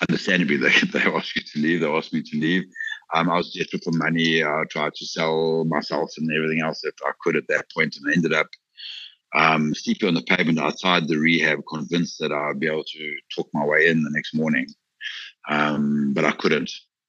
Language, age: English, 60-79